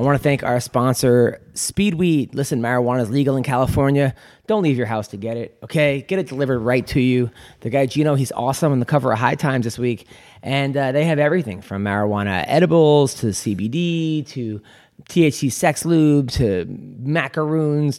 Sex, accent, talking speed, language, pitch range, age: male, American, 185 wpm, English, 120-150 Hz, 30-49